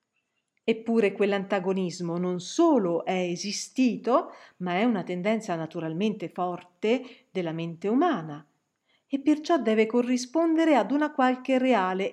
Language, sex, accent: Italian, female, native